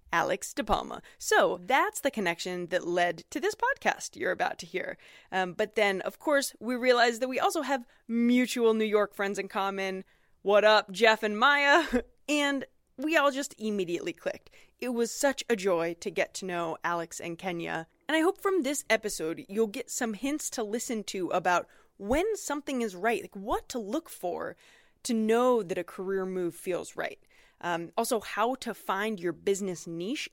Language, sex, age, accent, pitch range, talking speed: English, female, 20-39, American, 190-285 Hz, 190 wpm